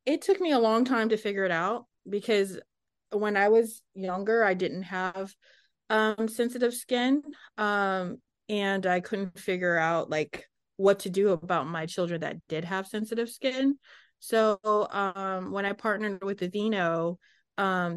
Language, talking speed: English, 160 wpm